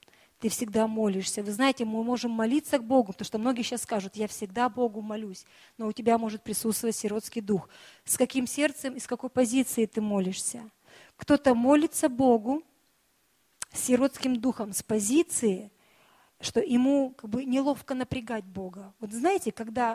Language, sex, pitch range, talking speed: Russian, female, 215-265 Hz, 160 wpm